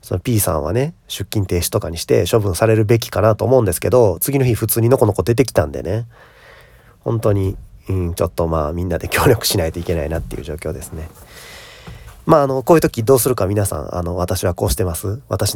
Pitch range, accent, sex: 85-110 Hz, native, male